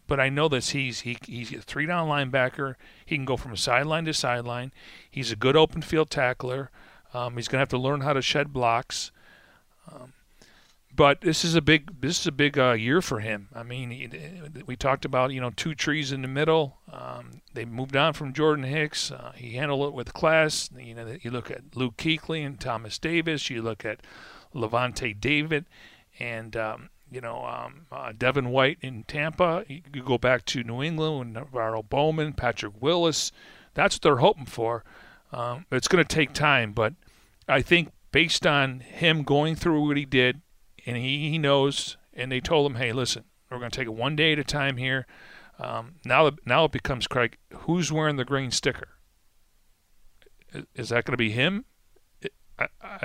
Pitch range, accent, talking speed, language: 120-150 Hz, American, 200 wpm, English